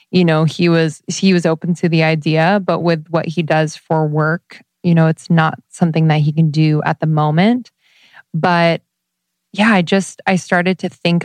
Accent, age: American, 20-39